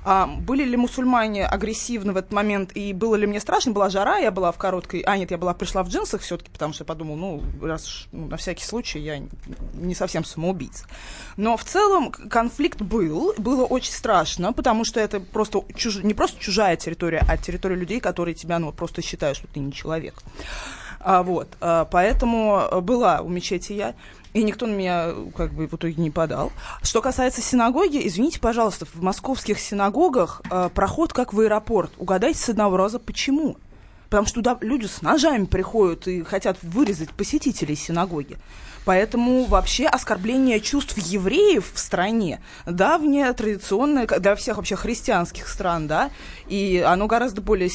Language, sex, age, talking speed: Russian, female, 20-39, 165 wpm